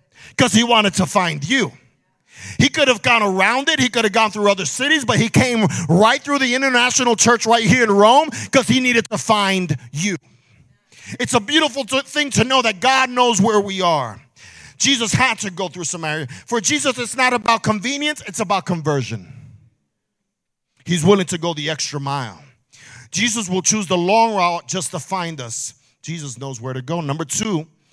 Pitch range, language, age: 145-210 Hz, English, 40-59